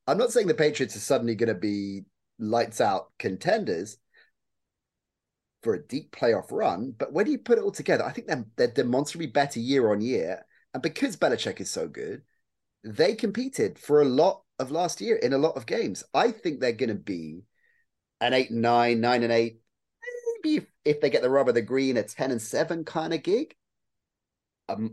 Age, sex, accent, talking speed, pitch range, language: 30-49, male, British, 185 wpm, 110-165 Hz, English